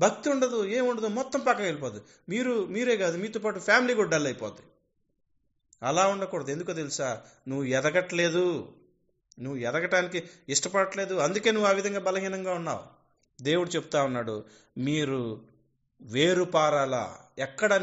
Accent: native